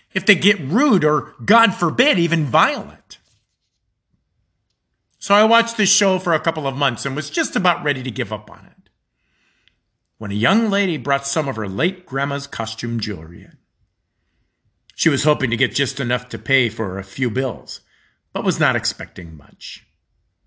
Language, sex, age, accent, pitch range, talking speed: English, male, 50-69, American, 105-175 Hz, 175 wpm